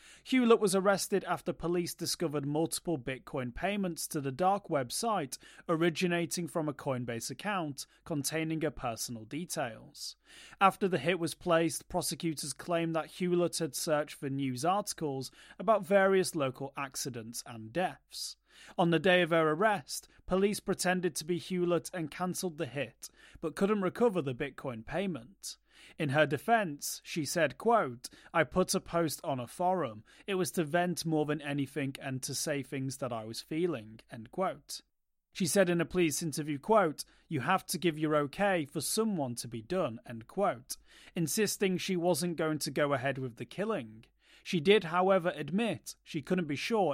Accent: British